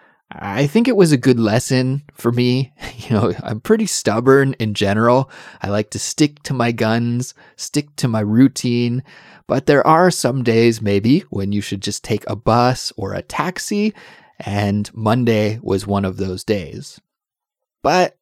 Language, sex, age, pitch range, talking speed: English, male, 30-49, 100-140 Hz, 170 wpm